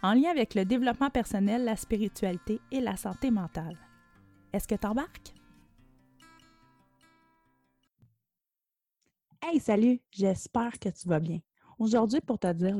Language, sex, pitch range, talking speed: French, female, 180-230 Hz, 125 wpm